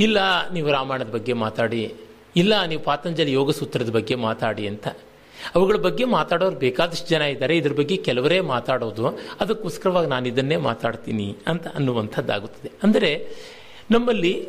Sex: male